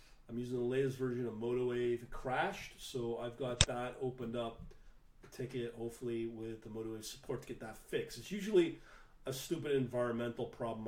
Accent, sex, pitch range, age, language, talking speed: American, male, 115-130 Hz, 40-59, English, 175 wpm